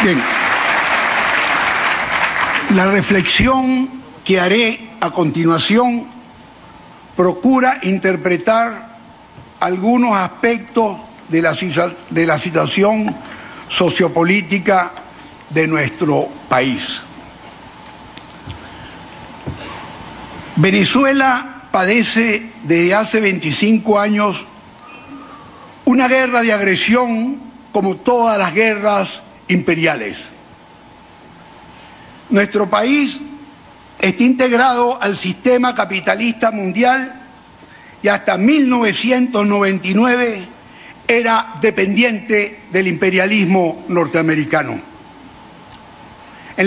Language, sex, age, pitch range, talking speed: Spanish, male, 60-79, 190-245 Hz, 65 wpm